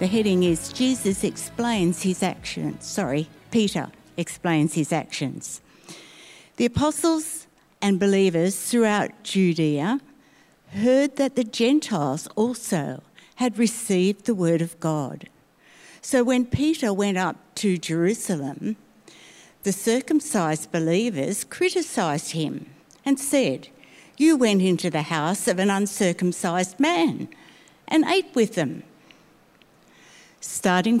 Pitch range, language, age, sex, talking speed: 175-245 Hz, English, 60-79, female, 110 wpm